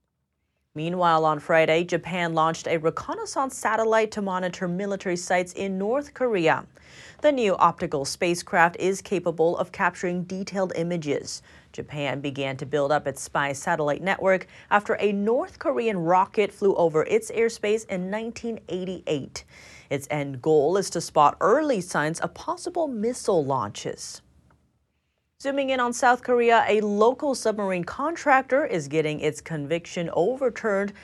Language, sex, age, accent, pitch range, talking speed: English, female, 30-49, American, 160-225 Hz, 135 wpm